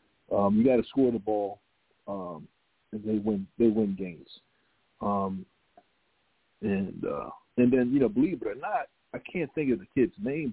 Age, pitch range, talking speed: 40-59, 105-130 Hz, 175 wpm